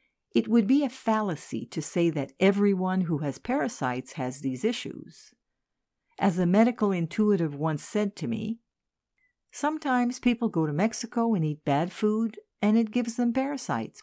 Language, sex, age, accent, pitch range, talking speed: English, female, 60-79, American, 155-225 Hz, 160 wpm